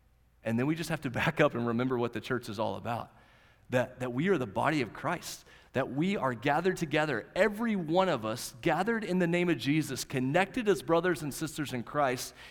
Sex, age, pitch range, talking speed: male, 30-49, 125-185 Hz, 220 wpm